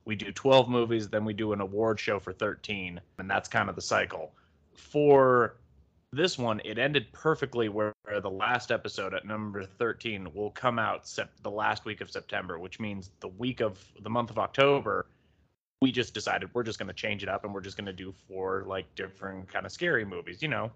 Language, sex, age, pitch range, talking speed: English, male, 30-49, 105-150 Hz, 210 wpm